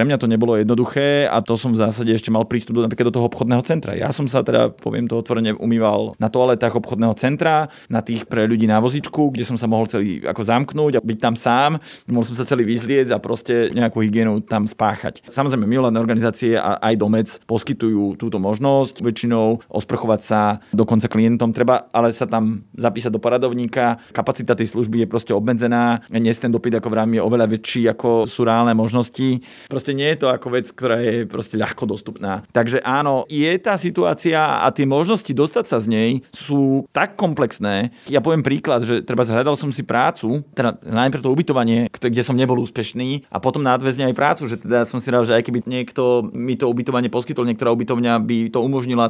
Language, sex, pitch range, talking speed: Slovak, male, 115-135 Hz, 195 wpm